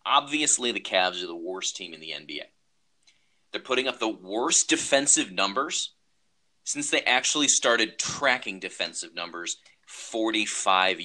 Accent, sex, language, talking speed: American, male, English, 135 wpm